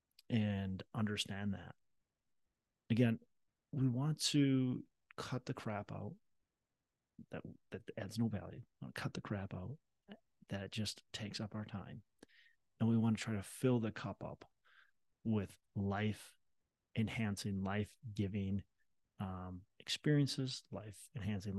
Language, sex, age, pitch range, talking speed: English, male, 30-49, 100-115 Hz, 130 wpm